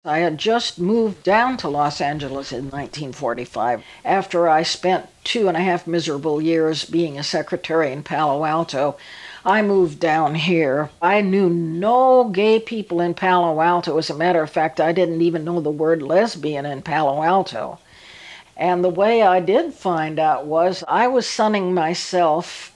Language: English